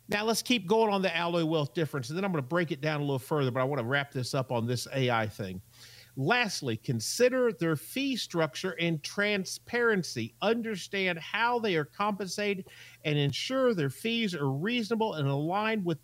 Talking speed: 195 wpm